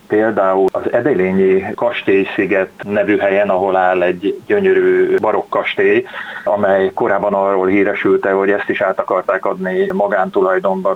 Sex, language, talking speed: male, Hungarian, 125 wpm